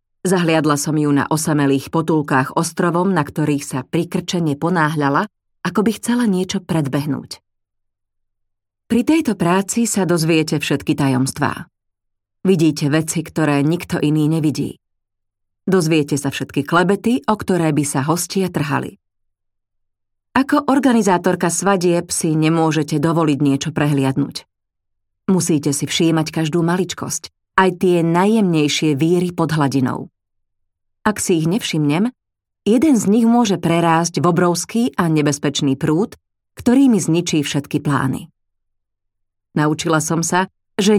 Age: 30-49